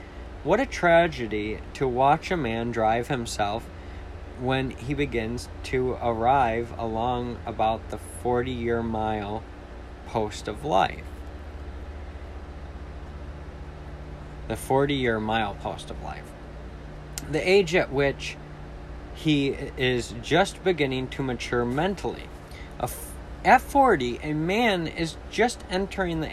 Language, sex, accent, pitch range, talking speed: English, male, American, 95-140 Hz, 110 wpm